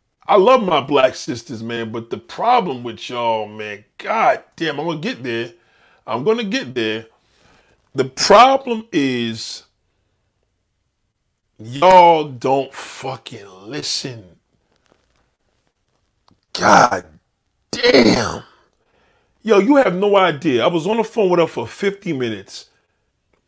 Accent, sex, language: American, male, English